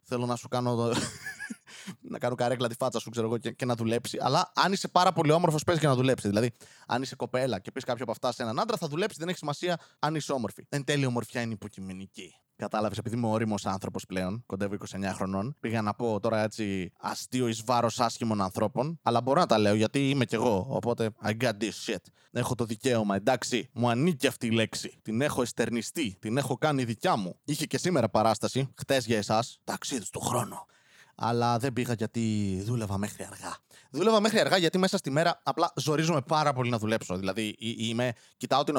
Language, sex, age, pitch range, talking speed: Greek, male, 20-39, 115-160 Hz, 210 wpm